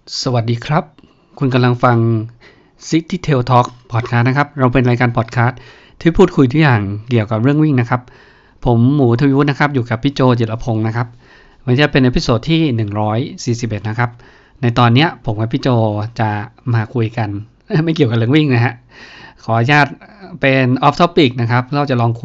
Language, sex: Thai, male